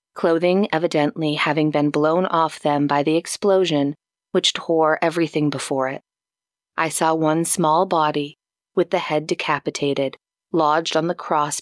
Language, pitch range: English, 150-170 Hz